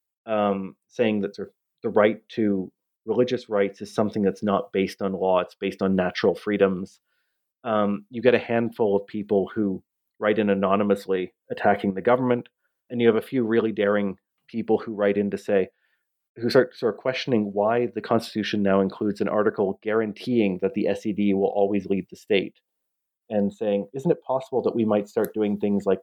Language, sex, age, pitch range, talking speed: English, male, 30-49, 100-125 Hz, 190 wpm